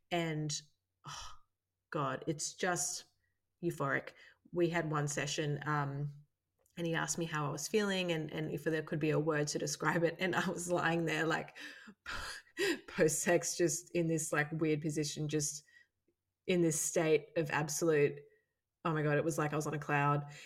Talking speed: 180 wpm